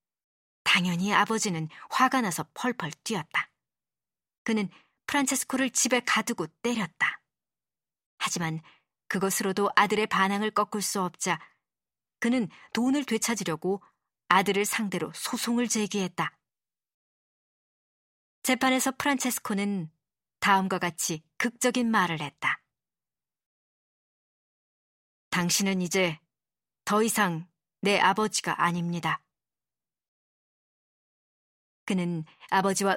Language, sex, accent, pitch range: Korean, male, native, 175-235 Hz